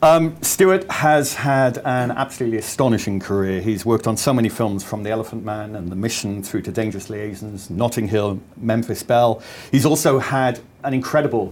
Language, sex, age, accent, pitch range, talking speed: English, male, 40-59, British, 105-130 Hz, 175 wpm